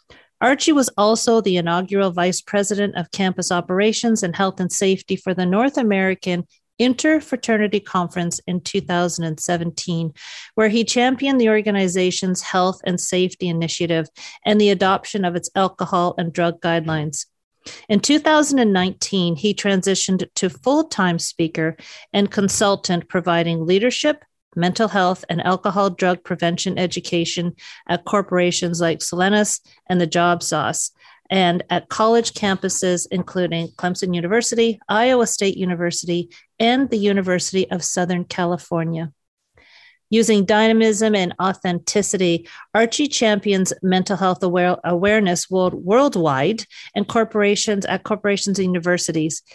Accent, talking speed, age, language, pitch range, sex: American, 120 wpm, 40-59, English, 175-215 Hz, female